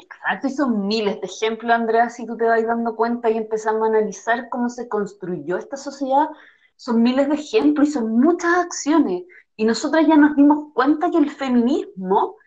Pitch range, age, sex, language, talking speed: 225-295 Hz, 30-49, female, Spanish, 190 wpm